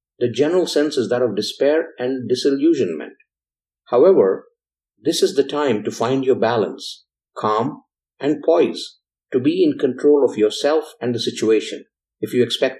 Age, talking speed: 50-69, 155 wpm